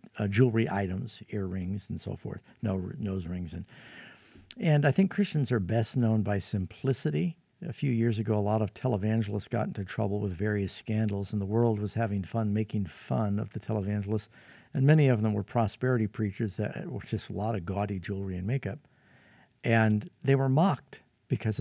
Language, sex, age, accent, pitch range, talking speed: English, male, 50-69, American, 105-130 Hz, 185 wpm